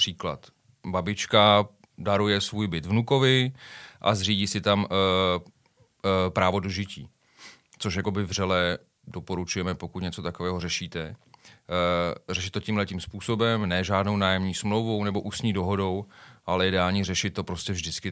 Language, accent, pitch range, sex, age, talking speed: Czech, native, 95-110 Hz, male, 30-49, 130 wpm